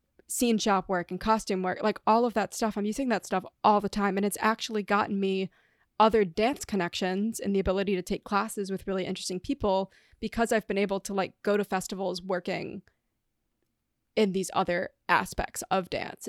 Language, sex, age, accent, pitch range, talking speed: English, female, 20-39, American, 190-220 Hz, 190 wpm